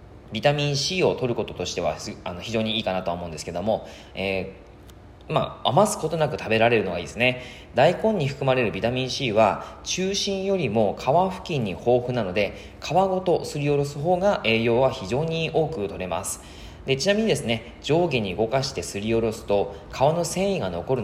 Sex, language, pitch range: male, Japanese, 100-165 Hz